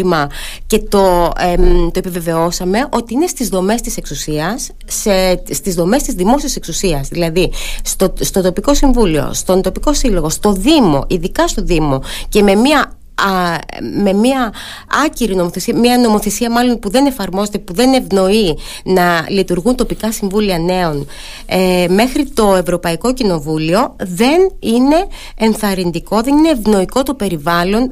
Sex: female